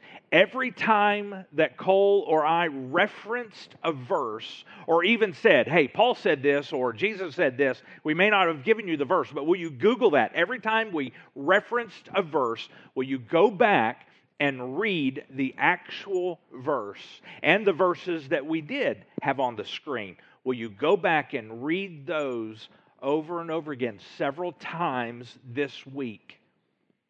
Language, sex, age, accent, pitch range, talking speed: English, male, 50-69, American, 125-175 Hz, 160 wpm